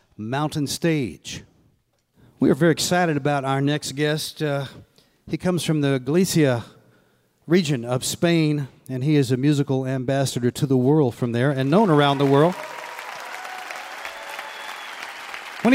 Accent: American